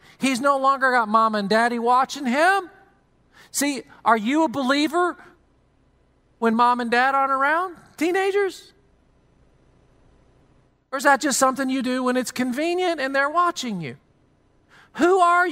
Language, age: English, 40-59